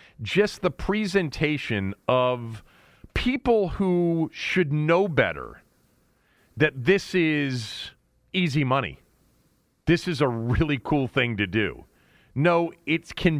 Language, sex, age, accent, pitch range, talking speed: English, male, 40-59, American, 115-165 Hz, 110 wpm